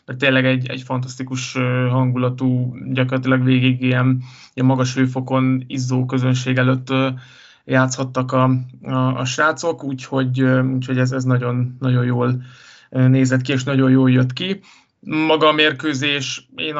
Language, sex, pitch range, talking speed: Hungarian, male, 125-135 Hz, 130 wpm